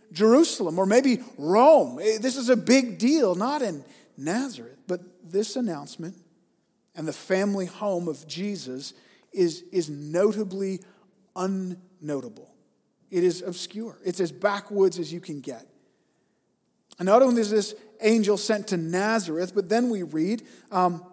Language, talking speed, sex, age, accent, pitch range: English, 140 wpm, male, 40-59, American, 180-230 Hz